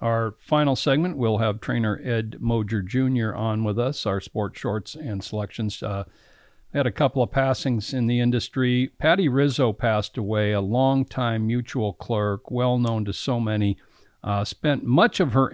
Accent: American